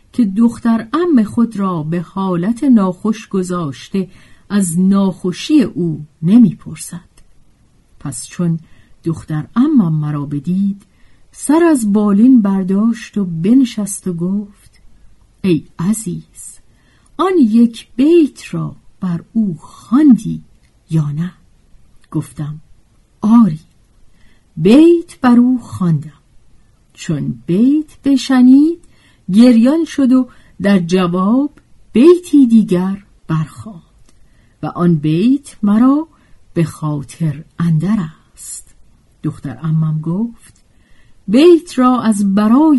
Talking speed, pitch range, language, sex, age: 100 wpm, 155-235 Hz, Persian, female, 50-69